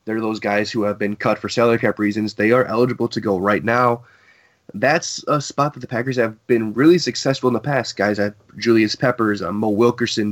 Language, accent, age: English, American, 20-39